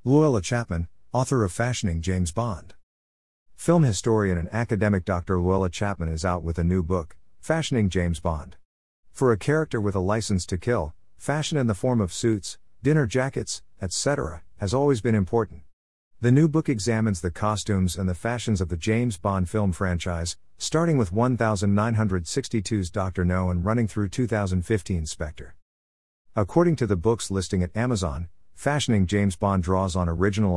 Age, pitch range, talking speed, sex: 50-69, 85-115 Hz, 160 wpm, male